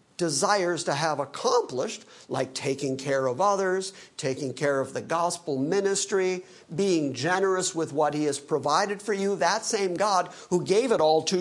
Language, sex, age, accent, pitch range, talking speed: English, male, 50-69, American, 155-205 Hz, 170 wpm